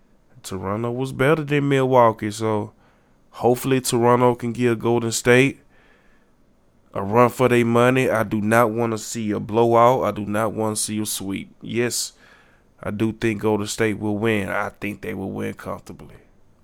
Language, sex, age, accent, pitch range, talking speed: English, male, 20-39, American, 105-120 Hz, 175 wpm